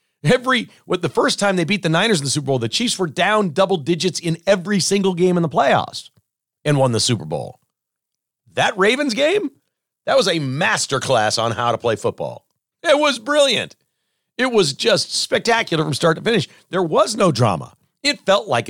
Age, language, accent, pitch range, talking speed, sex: 50-69, English, American, 125-195 Hz, 200 wpm, male